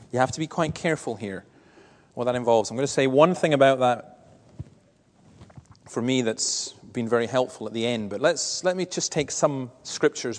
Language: English